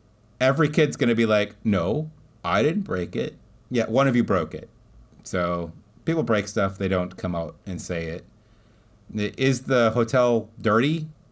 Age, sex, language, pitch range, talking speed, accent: 30-49, male, English, 95-125 Hz, 170 wpm, American